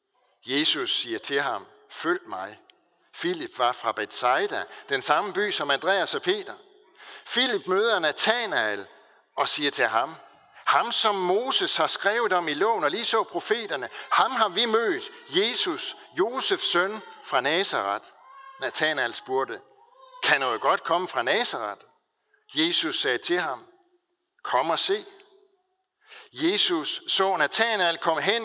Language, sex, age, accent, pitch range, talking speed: Danish, male, 60-79, native, 340-415 Hz, 135 wpm